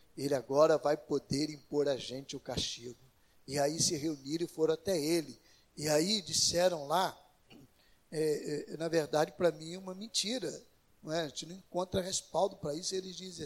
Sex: male